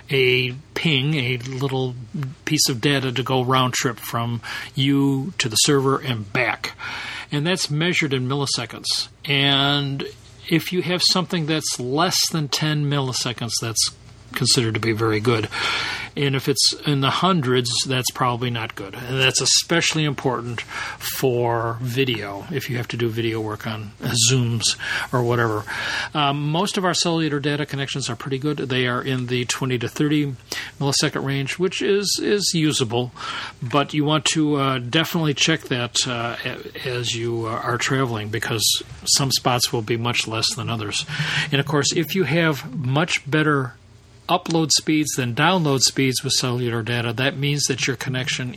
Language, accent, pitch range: English, American, 120-145 Hz